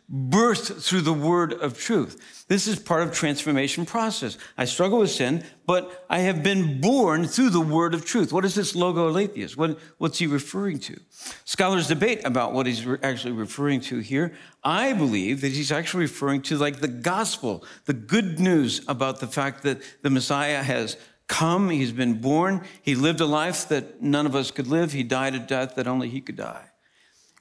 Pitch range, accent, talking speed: 125-170 Hz, American, 195 wpm